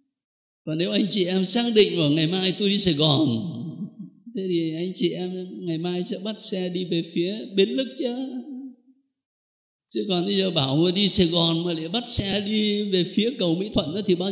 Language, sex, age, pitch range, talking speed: Vietnamese, male, 60-79, 170-280 Hz, 215 wpm